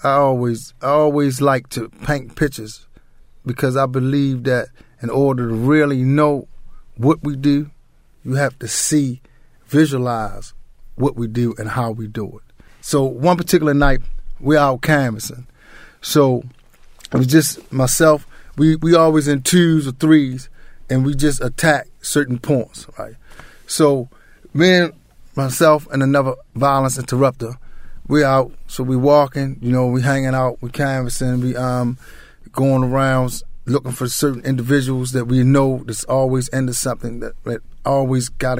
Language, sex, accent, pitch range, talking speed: English, male, American, 125-145 Hz, 155 wpm